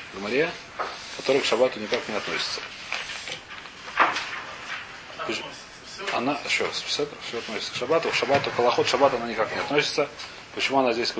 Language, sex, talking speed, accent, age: Russian, male, 125 wpm, native, 30-49